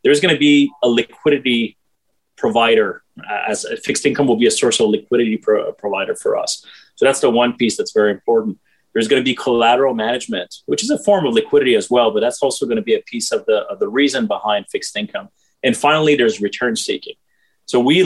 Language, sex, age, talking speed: English, male, 30-49, 220 wpm